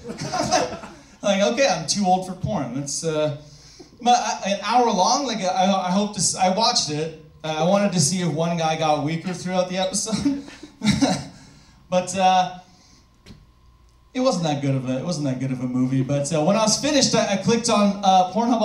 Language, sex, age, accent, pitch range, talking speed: English, male, 30-49, American, 150-215 Hz, 195 wpm